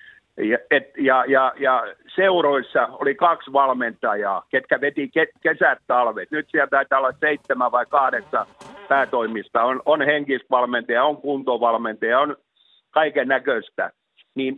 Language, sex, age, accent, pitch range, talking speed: Finnish, male, 50-69, native, 135-185 Hz, 125 wpm